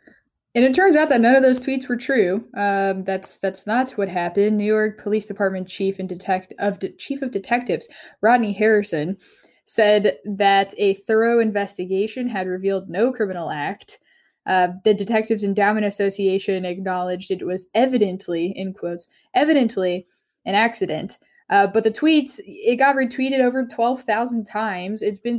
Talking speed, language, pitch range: 160 wpm, English, 190-240 Hz